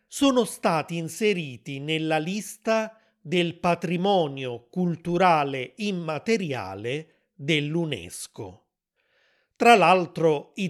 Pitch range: 150-200 Hz